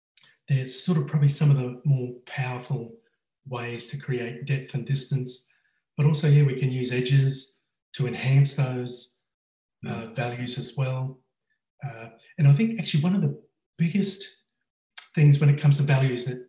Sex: male